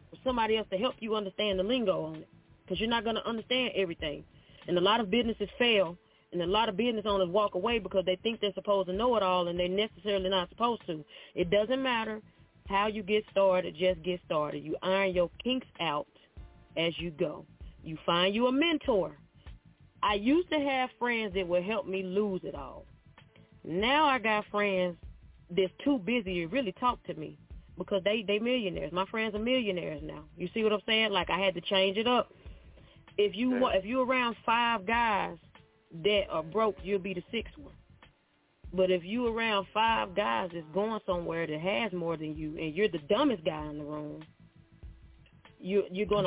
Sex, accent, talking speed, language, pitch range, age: female, American, 200 wpm, English, 175-220 Hz, 30-49